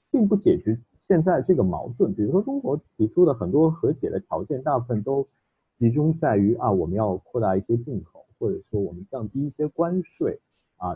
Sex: male